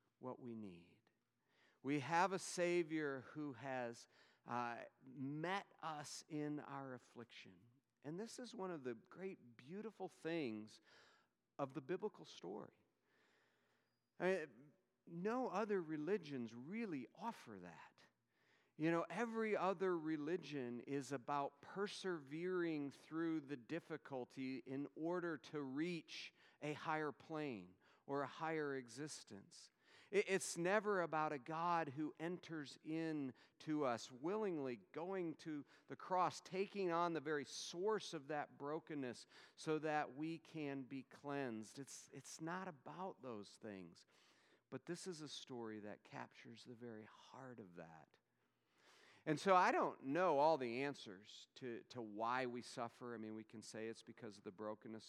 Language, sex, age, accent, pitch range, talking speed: English, male, 50-69, American, 120-165 Hz, 135 wpm